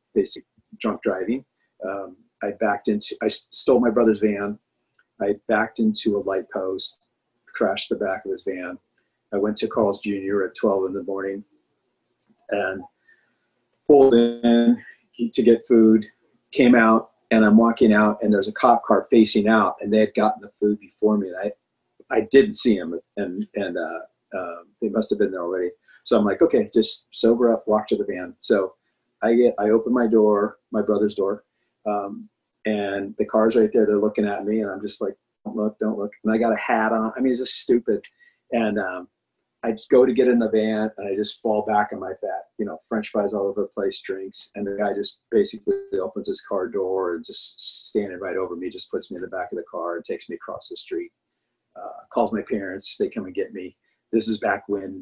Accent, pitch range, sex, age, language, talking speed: American, 105-120 Hz, male, 40-59, English, 215 wpm